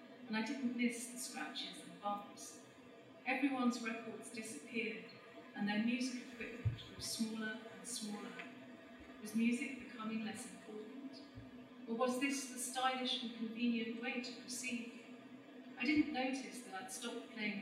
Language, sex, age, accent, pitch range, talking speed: Russian, female, 40-59, British, 230-250 Hz, 140 wpm